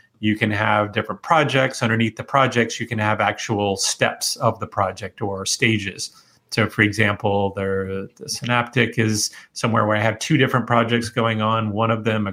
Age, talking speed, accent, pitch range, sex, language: 30-49, 185 wpm, American, 105-120 Hz, male, English